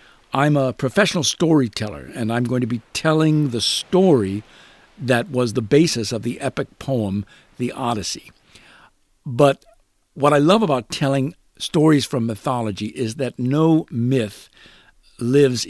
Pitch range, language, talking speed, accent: 110-140 Hz, English, 140 wpm, American